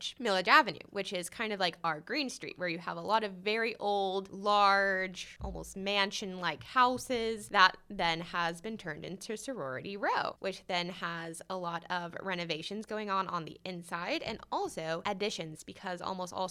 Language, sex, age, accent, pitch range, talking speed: English, female, 20-39, American, 180-240 Hz, 180 wpm